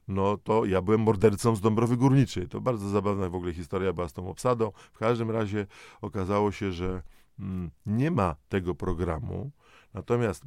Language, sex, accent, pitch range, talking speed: Polish, male, native, 95-125 Hz, 165 wpm